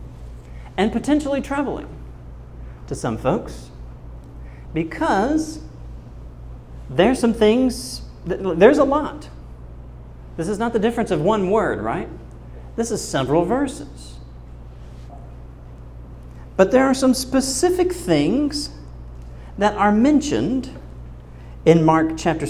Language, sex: English, male